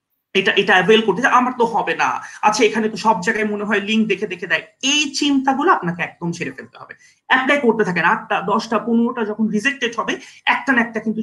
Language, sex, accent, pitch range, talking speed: English, male, Indian, 190-255 Hz, 55 wpm